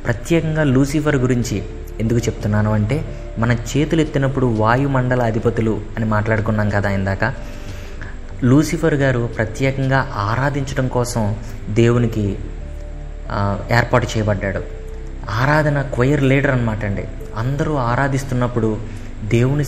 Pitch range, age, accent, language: 105-130 Hz, 20-39, native, Telugu